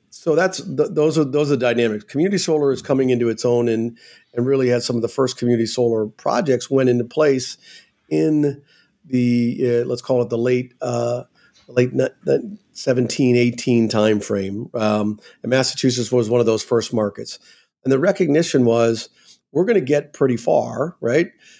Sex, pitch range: male, 120-140 Hz